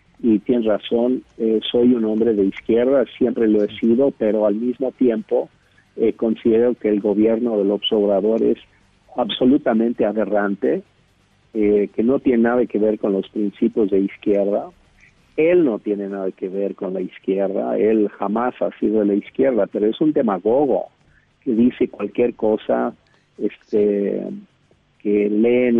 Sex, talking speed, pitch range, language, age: male, 155 wpm, 105-120 Hz, Spanish, 50-69